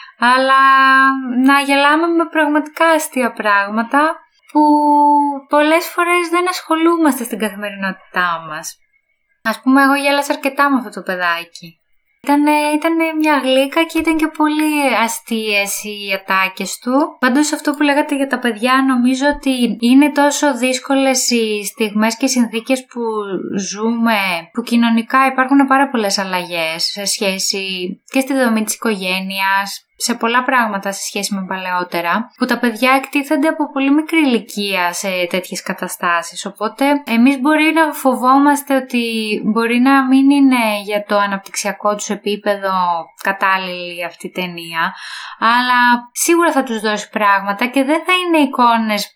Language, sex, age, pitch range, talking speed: Greek, female, 20-39, 200-280 Hz, 140 wpm